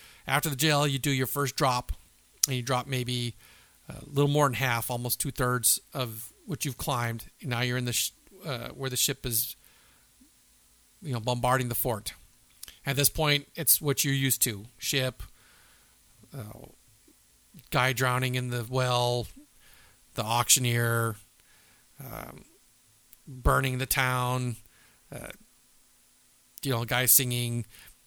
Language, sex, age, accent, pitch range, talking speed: English, male, 40-59, American, 120-145 Hz, 140 wpm